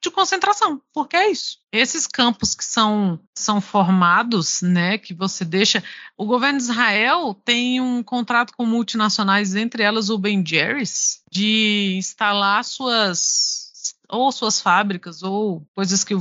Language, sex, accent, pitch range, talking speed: Portuguese, female, Brazilian, 195-290 Hz, 140 wpm